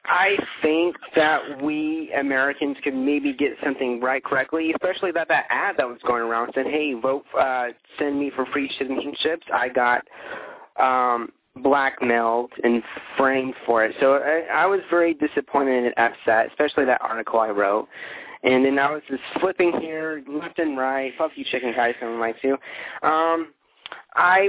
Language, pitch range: English, 120-155 Hz